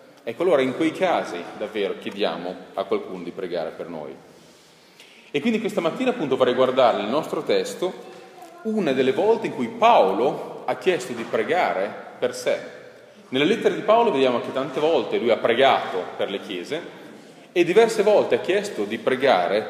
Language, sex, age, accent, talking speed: Italian, male, 30-49, native, 170 wpm